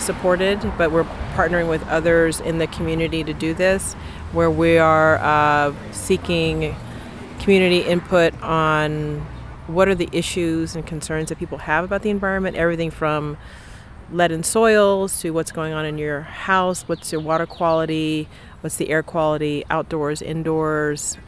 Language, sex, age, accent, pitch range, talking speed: English, female, 30-49, American, 150-170 Hz, 150 wpm